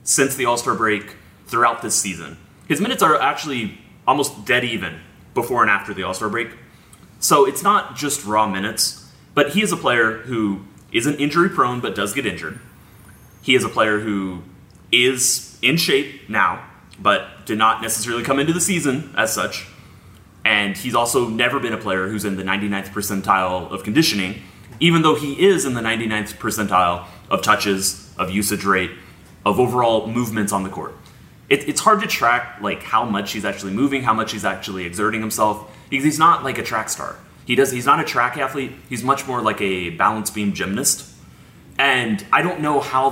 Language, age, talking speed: English, 30-49, 190 wpm